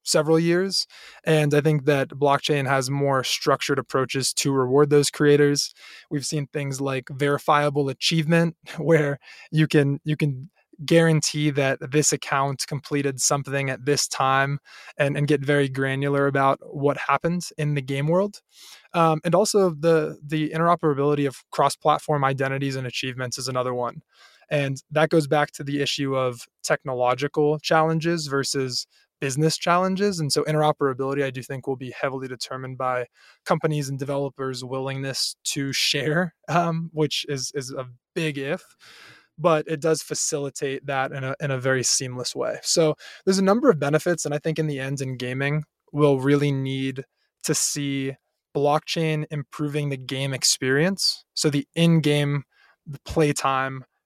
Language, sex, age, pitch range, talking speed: English, male, 20-39, 135-155 Hz, 155 wpm